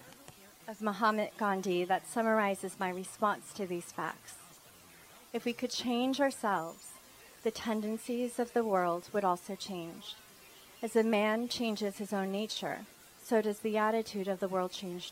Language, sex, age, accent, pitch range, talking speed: English, female, 30-49, American, 185-220 Hz, 150 wpm